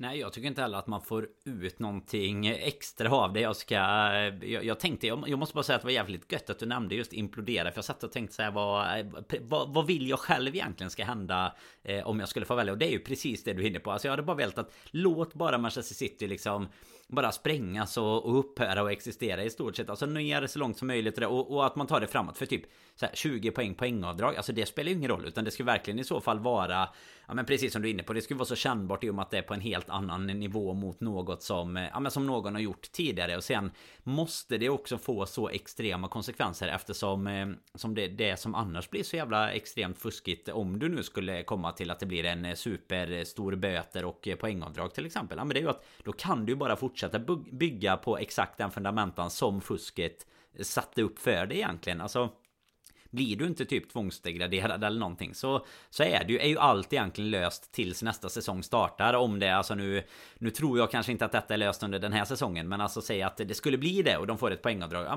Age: 30-49